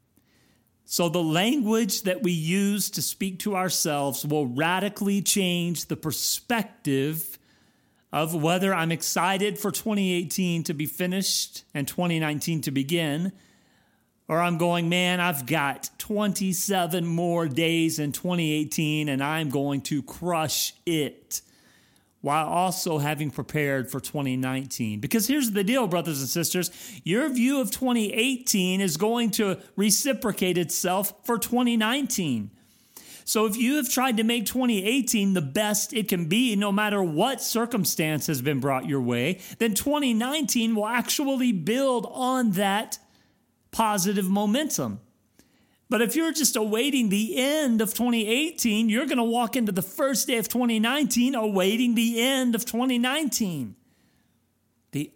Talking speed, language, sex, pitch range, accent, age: 135 wpm, English, male, 155-225 Hz, American, 40-59